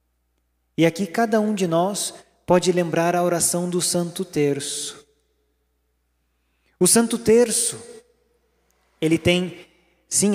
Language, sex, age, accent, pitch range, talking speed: Portuguese, male, 20-39, Brazilian, 145-190 Hz, 110 wpm